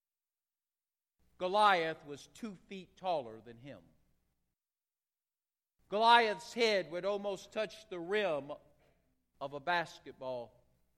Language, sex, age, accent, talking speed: English, male, 50-69, American, 95 wpm